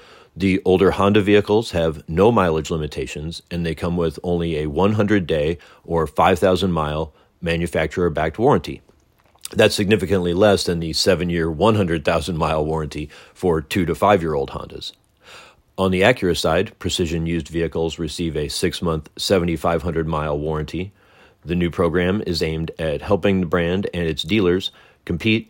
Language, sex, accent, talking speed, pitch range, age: English, male, American, 130 wpm, 80-95 Hz, 40-59